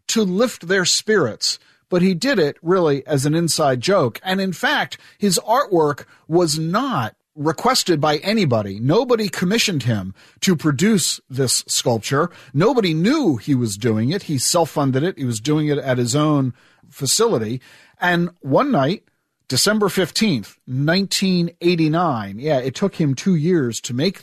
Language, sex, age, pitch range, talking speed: English, male, 50-69, 135-190 Hz, 150 wpm